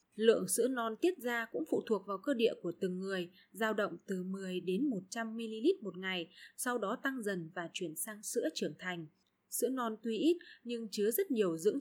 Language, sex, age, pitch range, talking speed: Vietnamese, female, 20-39, 185-250 Hz, 210 wpm